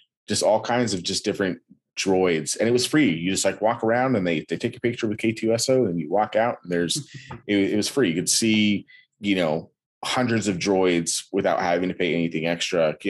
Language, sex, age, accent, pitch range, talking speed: English, male, 30-49, American, 85-110 Hz, 225 wpm